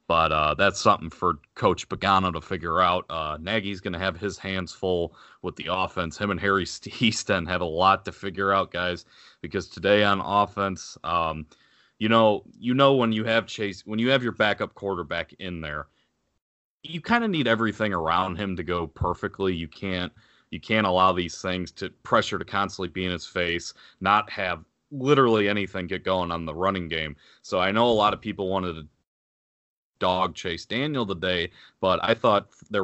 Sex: male